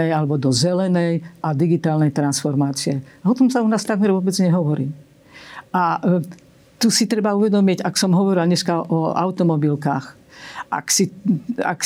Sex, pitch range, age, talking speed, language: female, 150-185 Hz, 50-69, 140 wpm, Slovak